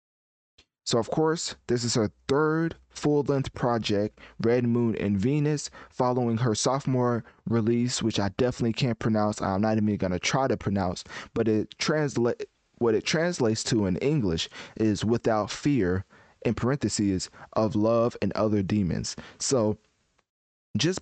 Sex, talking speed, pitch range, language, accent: male, 150 wpm, 105-135 Hz, English, American